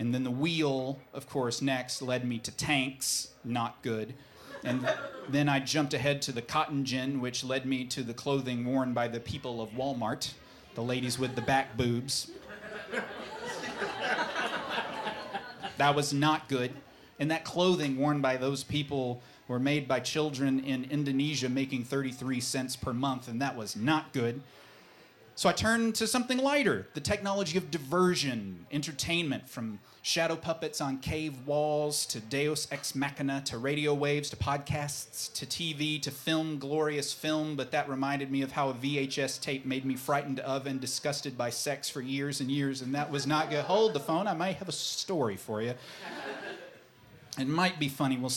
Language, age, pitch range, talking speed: English, 30-49, 130-150 Hz, 175 wpm